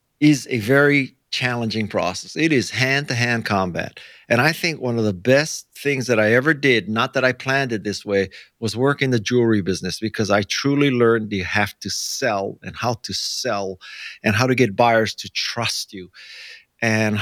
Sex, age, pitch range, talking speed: male, 50-69, 110-140 Hz, 200 wpm